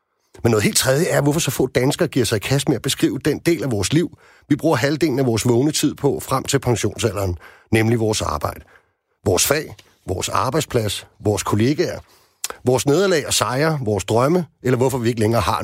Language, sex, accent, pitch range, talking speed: Danish, male, native, 110-150 Hz, 205 wpm